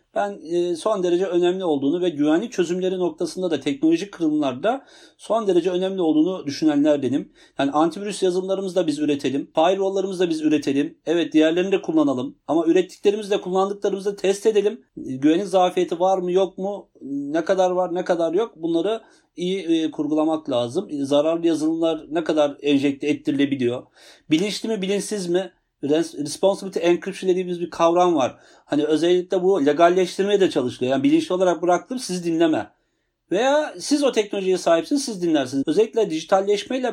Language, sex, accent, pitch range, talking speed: Turkish, male, native, 160-210 Hz, 150 wpm